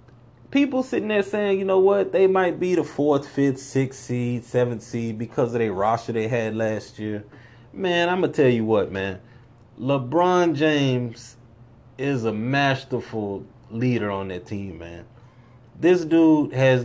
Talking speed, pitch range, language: 165 wpm, 110-140 Hz, English